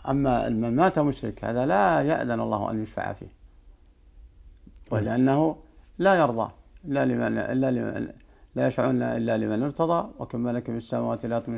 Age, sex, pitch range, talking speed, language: 50-69, male, 95-135 Hz, 150 wpm, Arabic